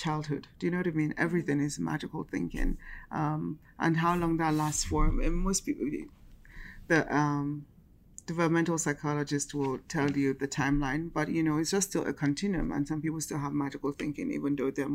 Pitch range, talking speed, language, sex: 145-165 Hz, 195 wpm, English, female